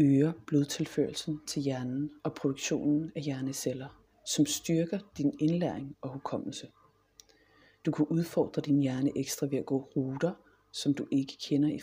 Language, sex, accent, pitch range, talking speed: Danish, female, native, 140-165 Hz, 145 wpm